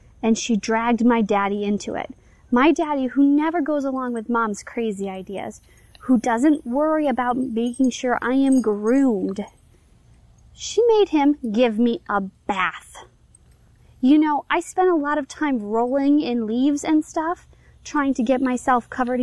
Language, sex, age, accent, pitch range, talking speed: English, female, 20-39, American, 225-290 Hz, 160 wpm